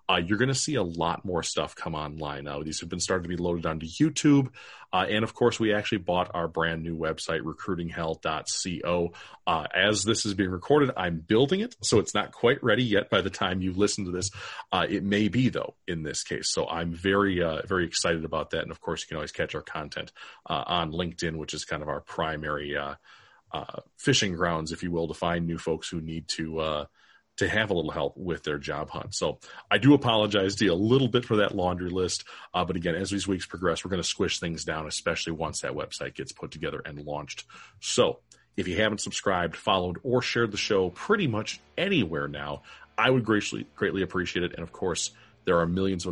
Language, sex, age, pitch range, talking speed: English, male, 30-49, 80-105 Hz, 225 wpm